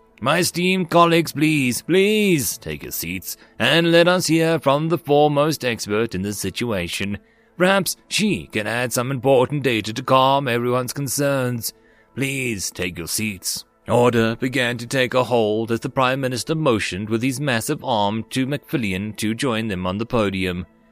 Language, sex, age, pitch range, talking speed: English, male, 30-49, 110-155 Hz, 165 wpm